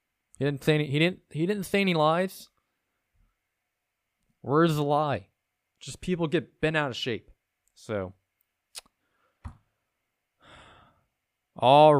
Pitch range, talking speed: 115-140 Hz, 115 wpm